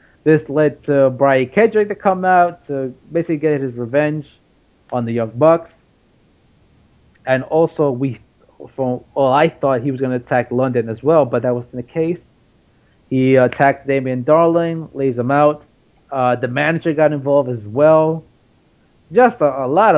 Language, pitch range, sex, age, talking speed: English, 125-155 Hz, male, 30-49, 165 wpm